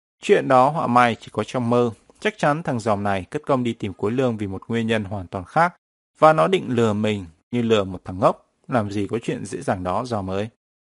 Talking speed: 250 wpm